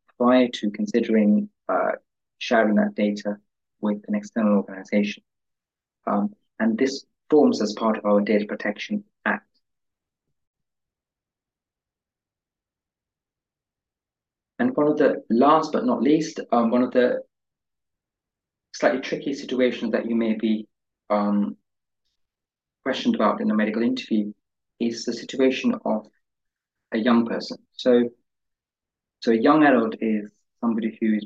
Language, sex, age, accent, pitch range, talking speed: English, male, 30-49, British, 105-120 Hz, 120 wpm